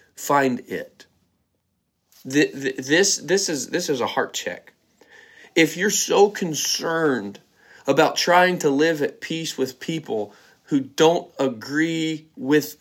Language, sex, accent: English, male, American